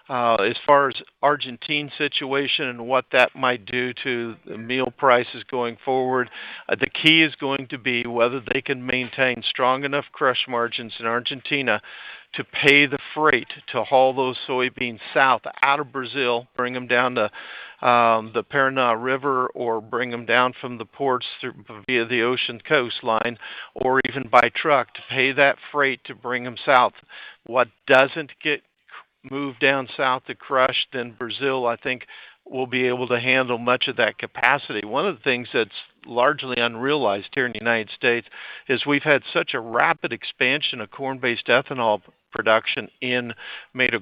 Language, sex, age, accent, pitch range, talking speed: English, male, 50-69, American, 120-135 Hz, 170 wpm